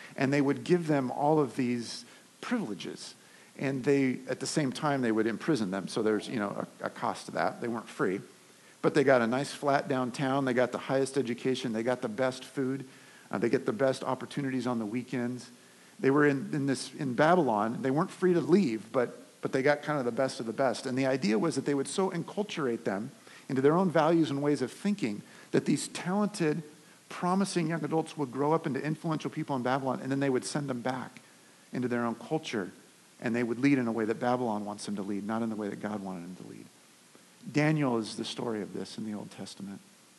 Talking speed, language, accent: 235 wpm, English, American